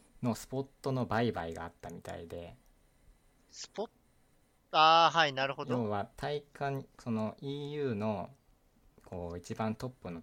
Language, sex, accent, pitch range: Japanese, male, native, 85-115 Hz